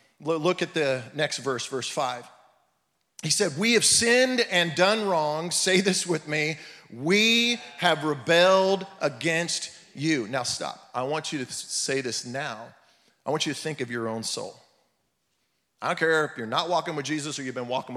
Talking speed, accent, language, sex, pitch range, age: 185 wpm, American, English, male, 130-175 Hz, 40-59